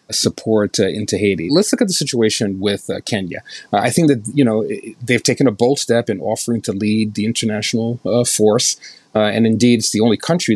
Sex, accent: male, American